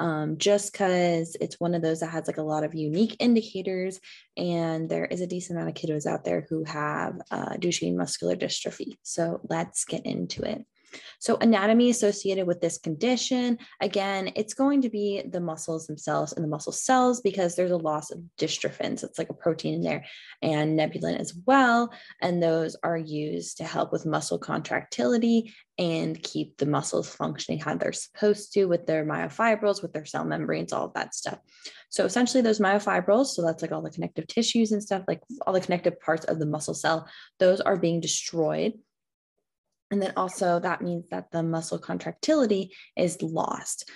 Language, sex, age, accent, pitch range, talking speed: English, female, 20-39, American, 165-220 Hz, 185 wpm